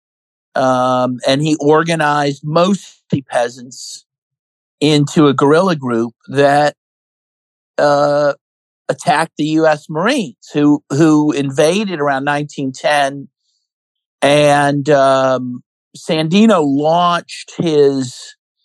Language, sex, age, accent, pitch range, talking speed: English, male, 50-69, American, 130-160 Hz, 85 wpm